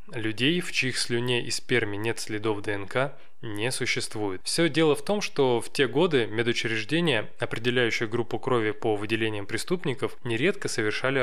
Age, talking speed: 20-39, 150 wpm